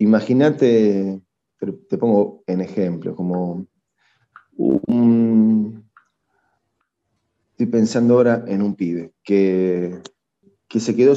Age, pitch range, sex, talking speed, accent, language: 30-49, 95-120 Hz, male, 90 wpm, Argentinian, Spanish